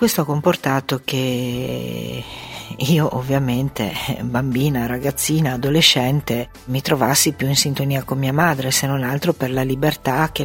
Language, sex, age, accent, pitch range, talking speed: Italian, female, 50-69, native, 125-145 Hz, 140 wpm